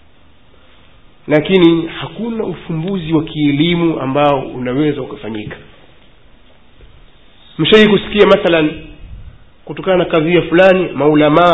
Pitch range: 145-210 Hz